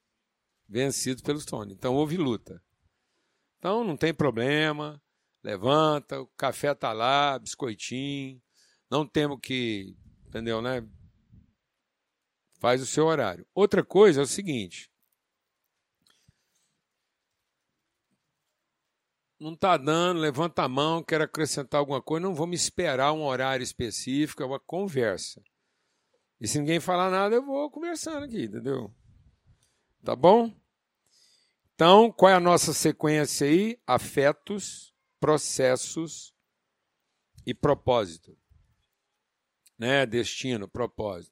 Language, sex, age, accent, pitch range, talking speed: Portuguese, male, 60-79, Brazilian, 125-175 Hz, 110 wpm